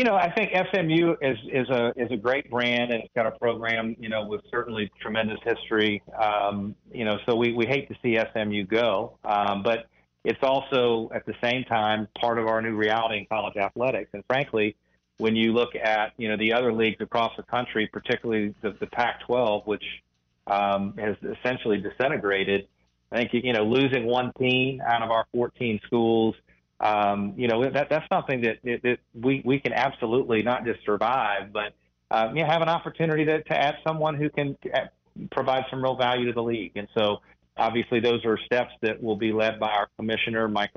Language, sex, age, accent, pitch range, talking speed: English, male, 40-59, American, 105-130 Hz, 195 wpm